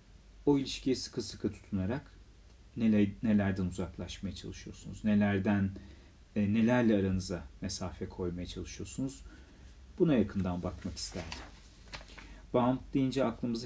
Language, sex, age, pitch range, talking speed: Turkish, male, 40-59, 95-110 Hz, 90 wpm